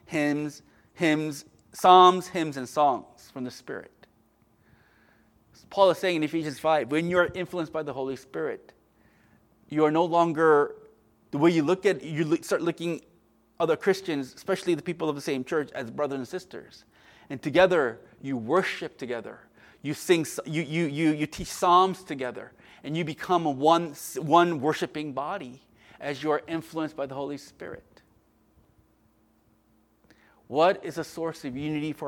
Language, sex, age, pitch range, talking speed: English, male, 30-49, 140-170 Hz, 160 wpm